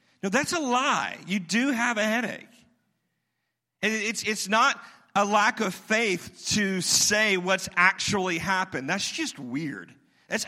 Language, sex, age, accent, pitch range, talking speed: English, male, 40-59, American, 165-215 Hz, 145 wpm